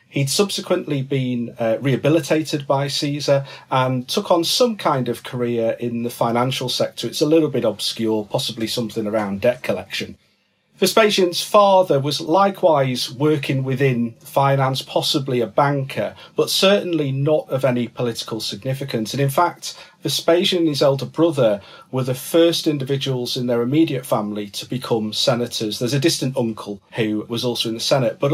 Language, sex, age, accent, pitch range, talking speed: English, male, 40-59, British, 120-155 Hz, 160 wpm